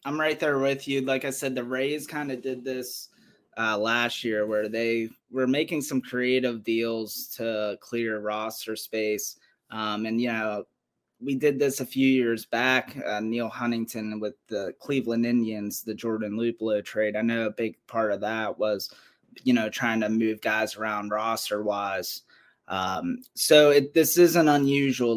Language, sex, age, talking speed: English, male, 20-39, 170 wpm